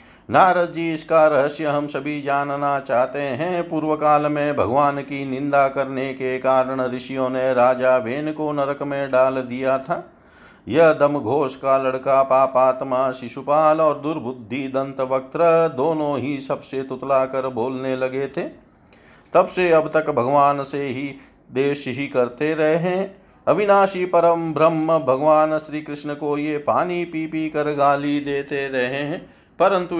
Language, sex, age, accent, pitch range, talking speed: Hindi, male, 50-69, native, 130-155 Hz, 145 wpm